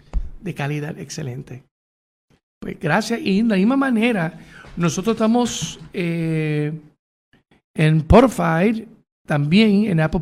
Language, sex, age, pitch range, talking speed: Spanish, male, 60-79, 155-195 Hz, 105 wpm